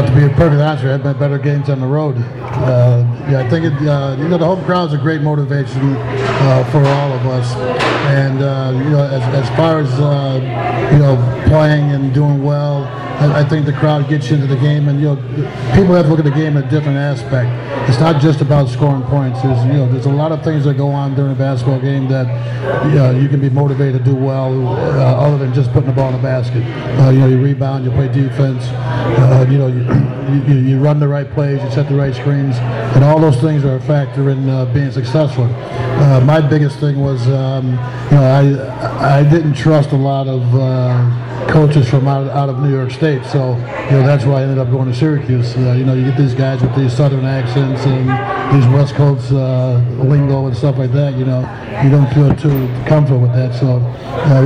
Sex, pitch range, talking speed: male, 130-145 Hz, 235 wpm